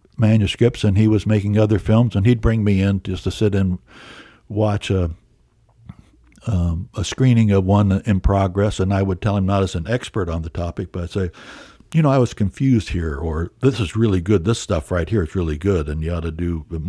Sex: male